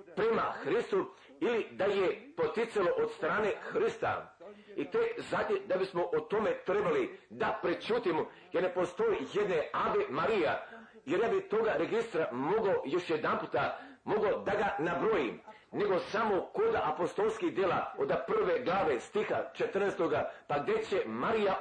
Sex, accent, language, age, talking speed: male, native, Croatian, 50-69, 145 wpm